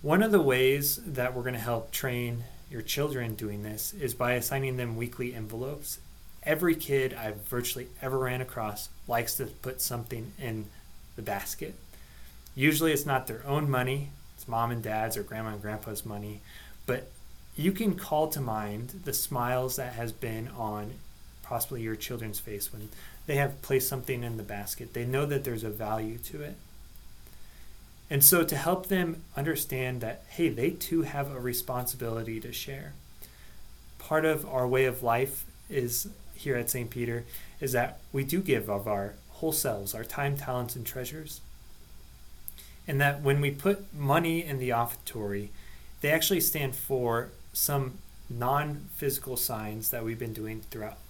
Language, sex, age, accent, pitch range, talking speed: English, male, 20-39, American, 110-140 Hz, 165 wpm